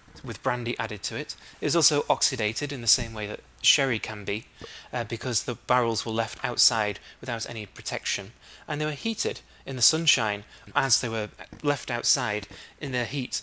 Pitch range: 110-135 Hz